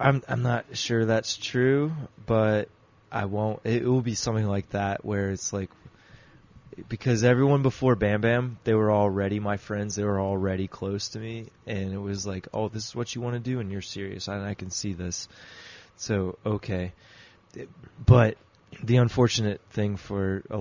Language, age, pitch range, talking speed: English, 20-39, 95-115 Hz, 185 wpm